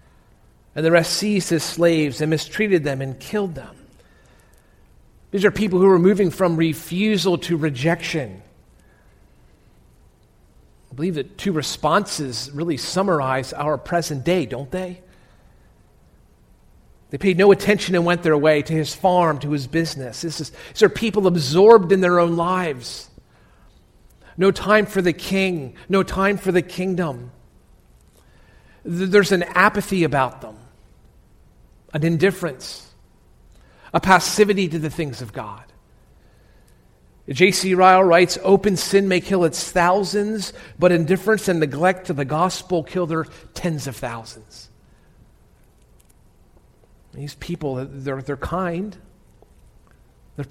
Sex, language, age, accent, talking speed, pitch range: male, English, 40-59, American, 125 wpm, 145-185 Hz